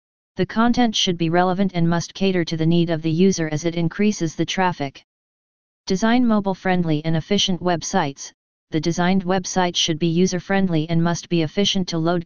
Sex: female